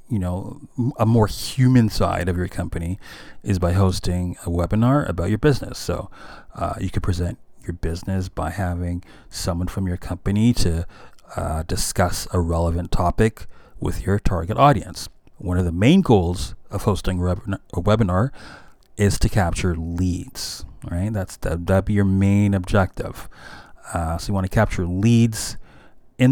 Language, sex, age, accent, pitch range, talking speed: English, male, 30-49, American, 90-115 Hz, 155 wpm